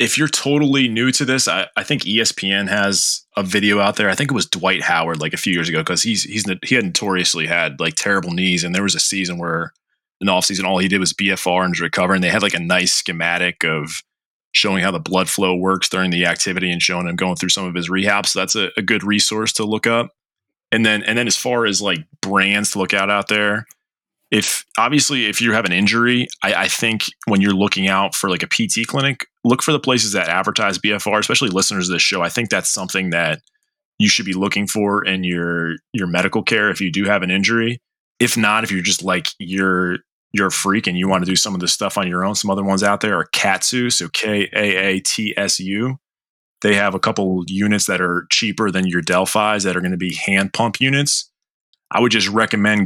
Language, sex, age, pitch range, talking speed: English, male, 20-39, 95-110 Hz, 235 wpm